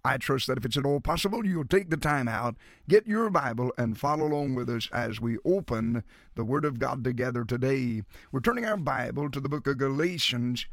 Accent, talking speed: American, 220 wpm